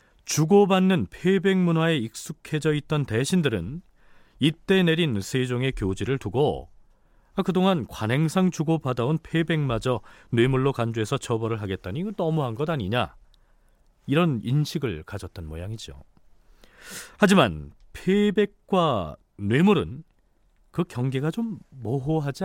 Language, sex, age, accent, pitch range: Korean, male, 40-59, native, 110-165 Hz